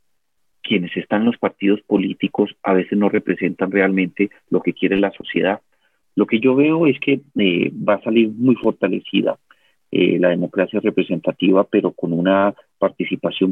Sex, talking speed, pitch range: male, 160 wpm, 95-105 Hz